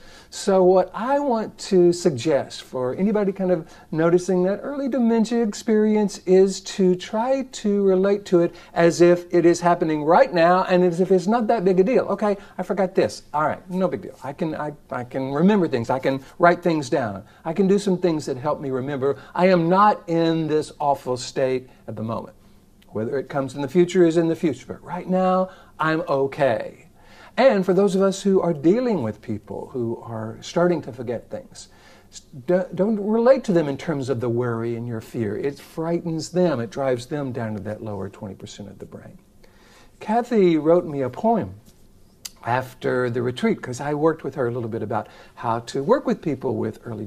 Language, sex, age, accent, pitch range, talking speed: English, male, 50-69, American, 135-185 Hz, 205 wpm